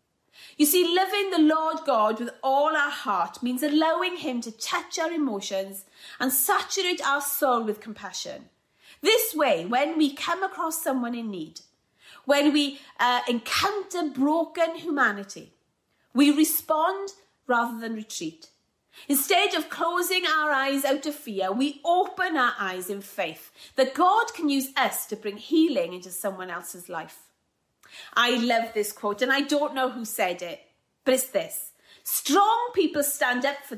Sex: female